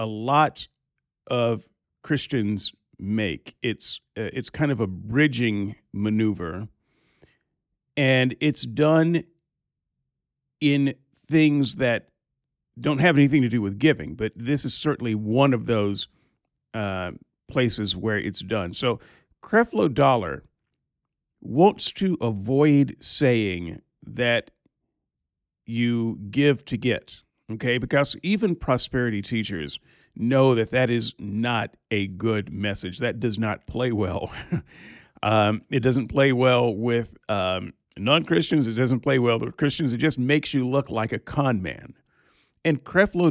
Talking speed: 130 wpm